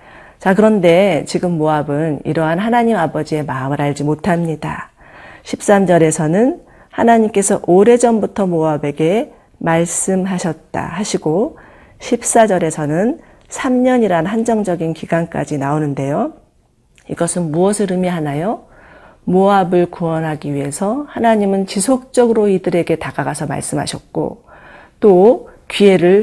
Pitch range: 155-200 Hz